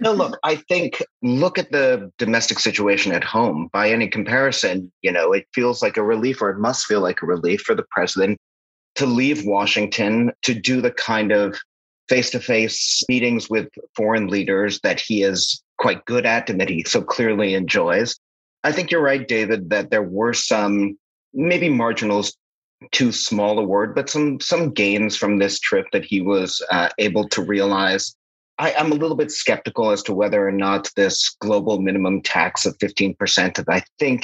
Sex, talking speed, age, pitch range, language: male, 190 wpm, 30-49, 100-125 Hz, English